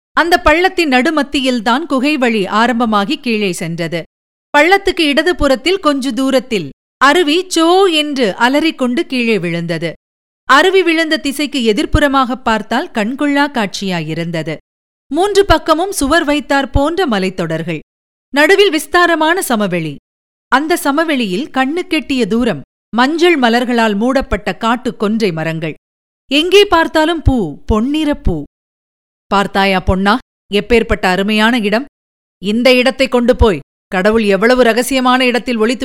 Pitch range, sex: 215-290 Hz, female